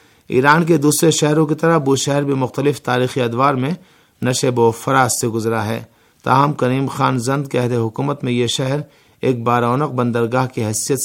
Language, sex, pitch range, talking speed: Urdu, male, 120-140 Hz, 180 wpm